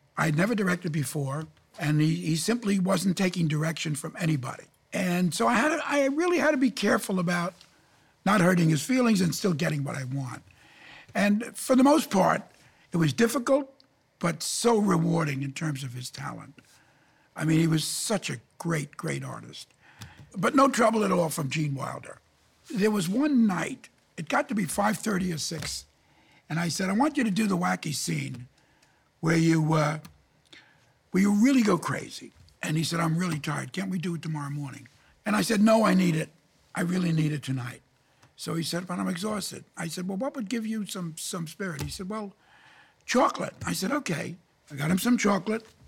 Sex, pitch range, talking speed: male, 155-210 Hz, 190 wpm